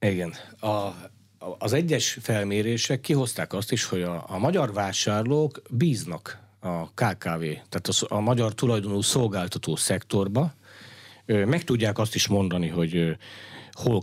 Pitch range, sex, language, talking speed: 100-125 Hz, male, Hungarian, 125 wpm